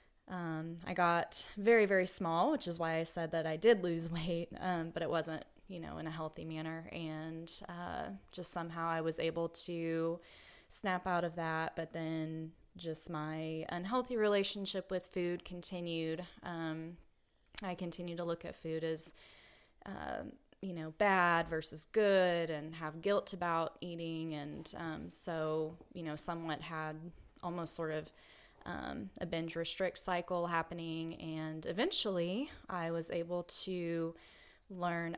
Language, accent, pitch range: English, American, 160-180 Hz